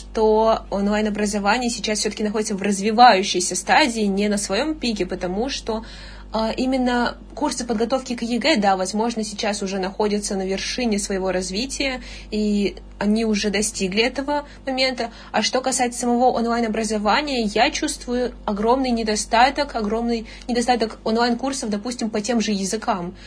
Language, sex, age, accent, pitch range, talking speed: Russian, female, 20-39, native, 210-240 Hz, 130 wpm